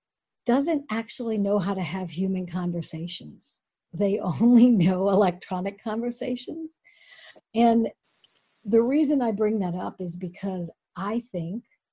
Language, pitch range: English, 185-225 Hz